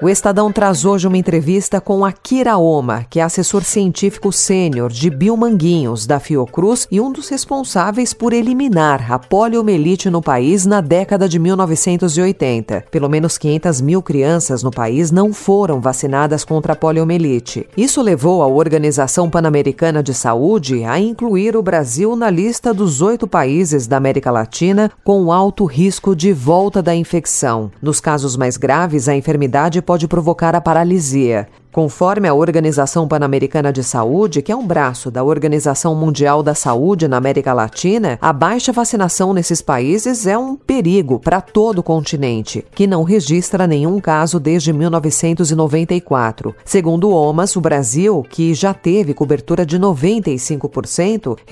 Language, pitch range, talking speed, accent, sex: Portuguese, 145-195 Hz, 150 wpm, Brazilian, female